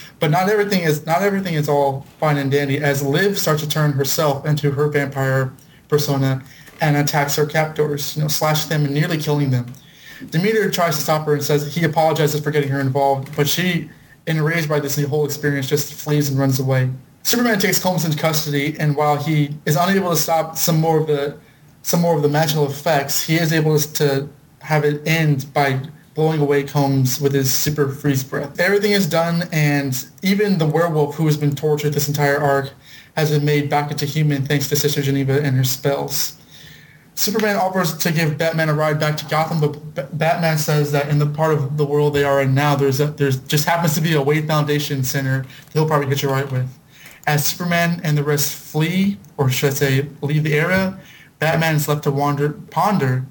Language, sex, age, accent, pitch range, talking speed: English, male, 20-39, American, 145-160 Hz, 205 wpm